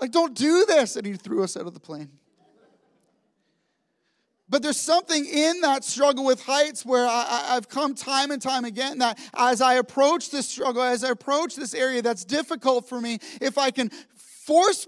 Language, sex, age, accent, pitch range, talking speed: English, male, 30-49, American, 245-290 Hz, 185 wpm